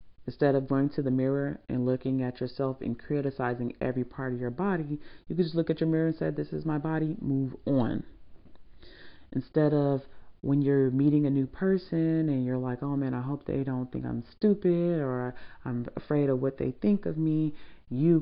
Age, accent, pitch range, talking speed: 30-49, American, 120-145 Hz, 205 wpm